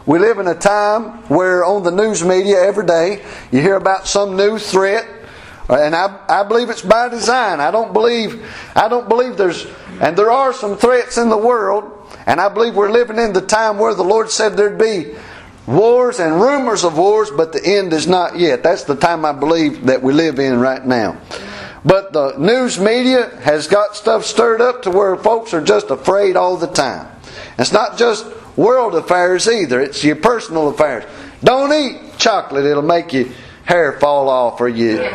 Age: 50-69